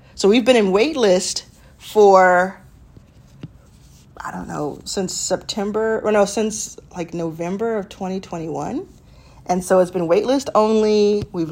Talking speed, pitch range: 130 wpm, 175-215 Hz